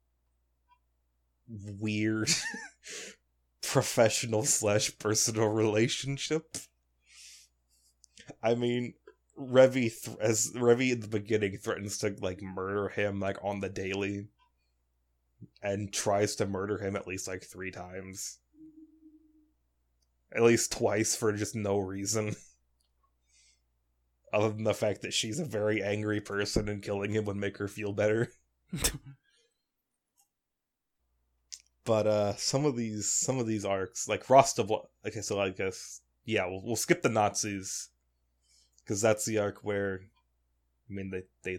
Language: English